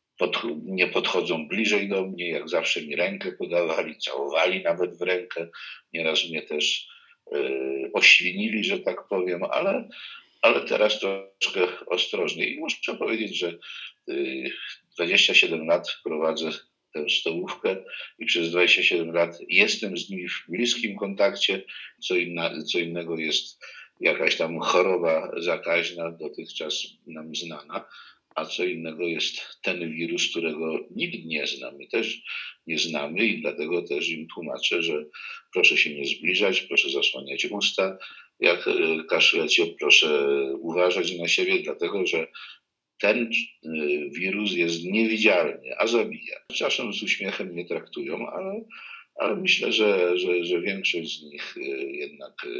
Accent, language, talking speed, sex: native, Polish, 130 wpm, male